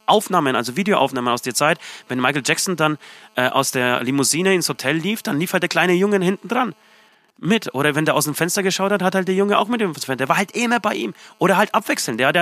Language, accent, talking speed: German, German, 265 wpm